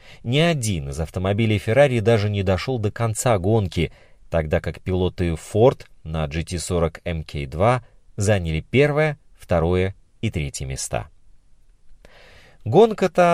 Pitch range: 90-125 Hz